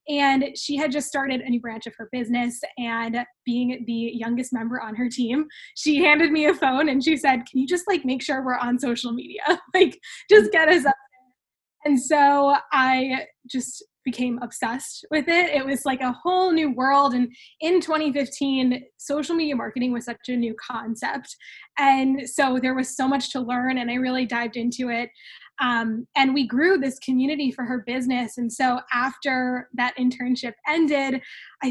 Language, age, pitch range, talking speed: English, 10-29, 245-290 Hz, 185 wpm